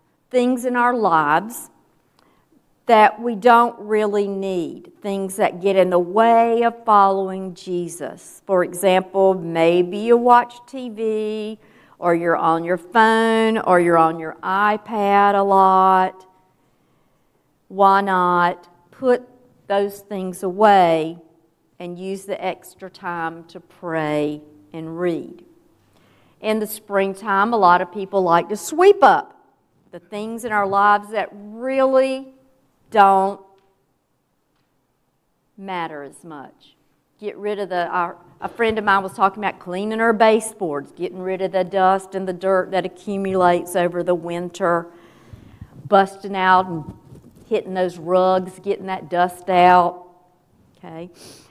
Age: 50-69